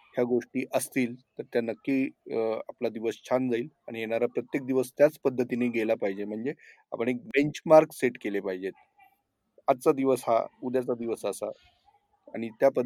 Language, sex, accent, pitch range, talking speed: Marathi, male, native, 115-155 Hz, 70 wpm